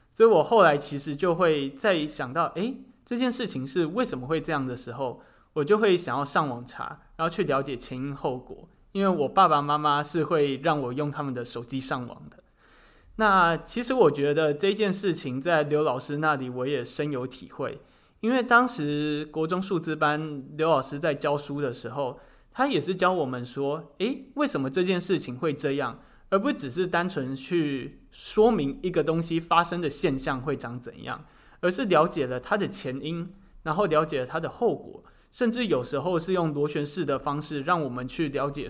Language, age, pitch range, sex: Chinese, 20-39, 140-180 Hz, male